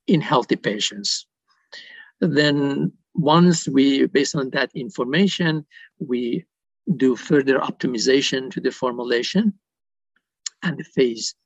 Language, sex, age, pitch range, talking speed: English, male, 50-69, 130-195 Hz, 100 wpm